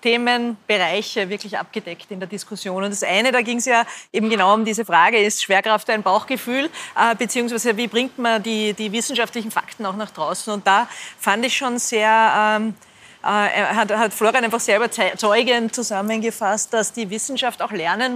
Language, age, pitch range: German, 30-49, 200-235 Hz